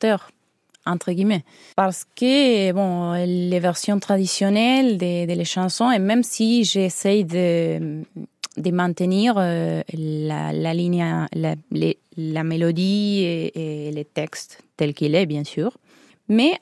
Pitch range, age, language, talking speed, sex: 175-225 Hz, 20-39, French, 125 wpm, female